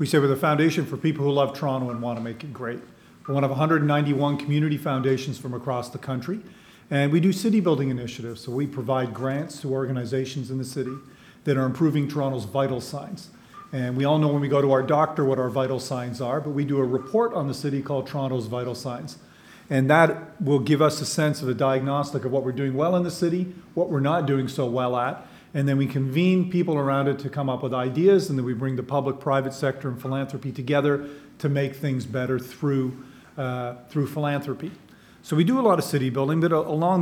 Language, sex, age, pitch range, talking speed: English, male, 40-59, 130-155 Hz, 230 wpm